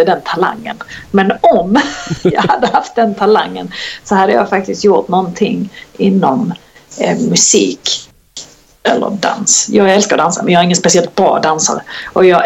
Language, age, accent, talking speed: English, 40-59, Swedish, 155 wpm